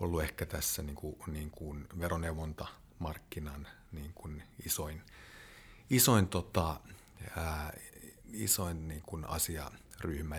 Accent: native